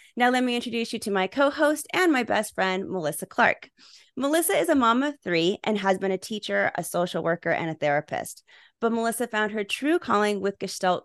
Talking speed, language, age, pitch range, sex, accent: 210 wpm, English, 30-49, 195-280 Hz, female, American